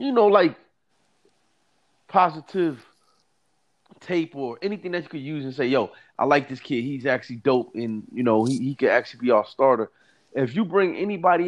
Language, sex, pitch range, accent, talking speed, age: English, male, 130-180 Hz, American, 185 wpm, 30-49